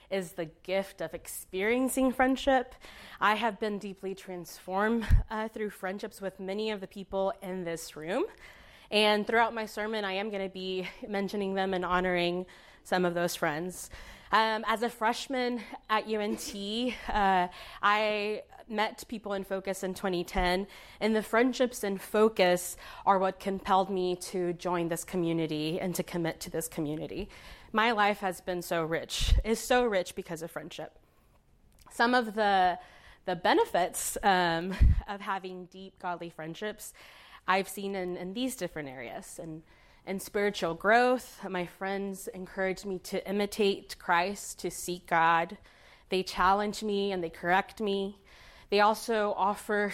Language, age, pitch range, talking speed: English, 20-39, 180-215 Hz, 150 wpm